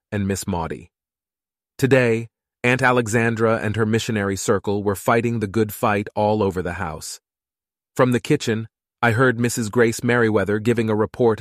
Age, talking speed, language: 30-49, 160 wpm, English